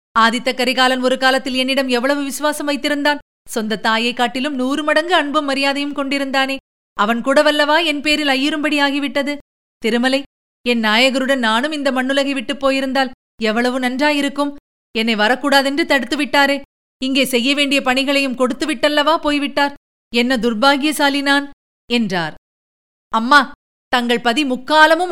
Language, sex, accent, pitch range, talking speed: Tamil, female, native, 250-285 Hz, 115 wpm